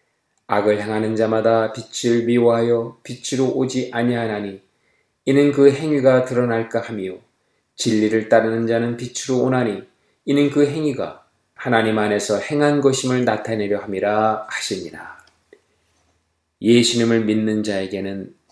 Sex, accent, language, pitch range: male, native, Korean, 105-130 Hz